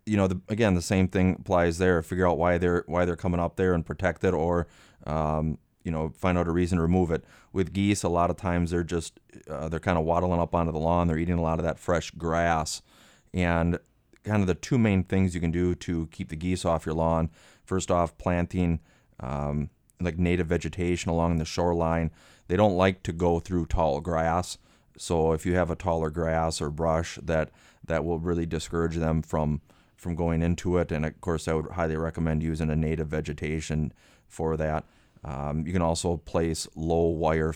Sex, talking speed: male, 210 wpm